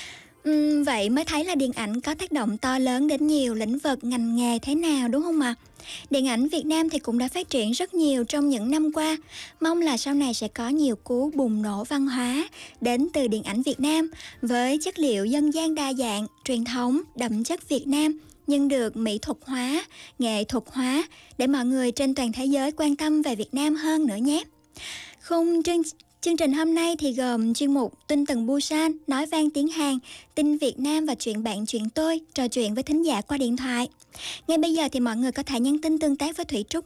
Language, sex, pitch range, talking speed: Vietnamese, male, 245-305 Hz, 230 wpm